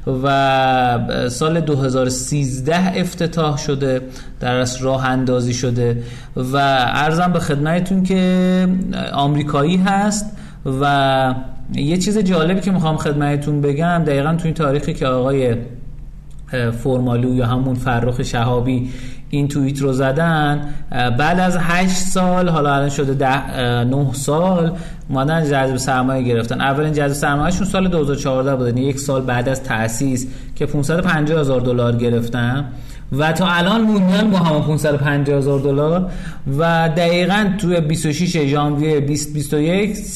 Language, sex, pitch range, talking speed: Persian, male, 130-165 Hz, 125 wpm